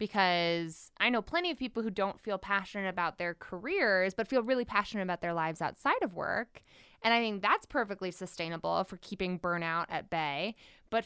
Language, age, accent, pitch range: English, 20-39, American, 175-235 Hz